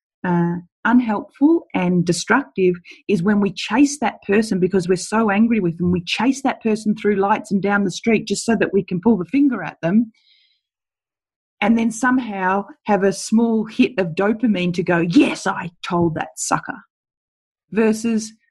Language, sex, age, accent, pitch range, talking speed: English, female, 30-49, Australian, 185-230 Hz, 170 wpm